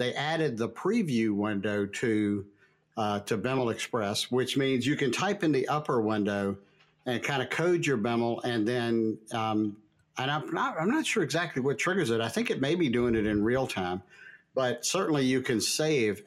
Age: 50-69